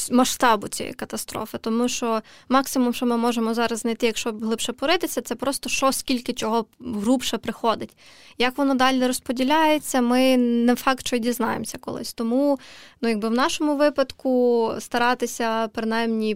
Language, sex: Ukrainian, female